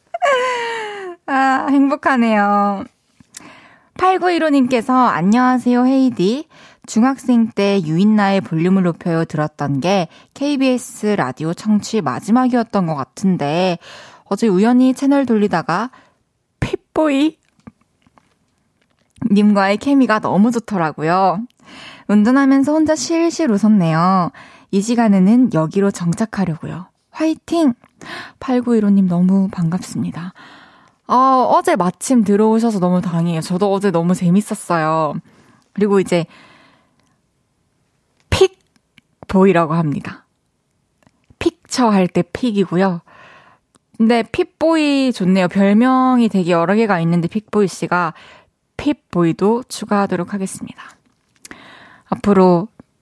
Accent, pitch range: native, 180-255 Hz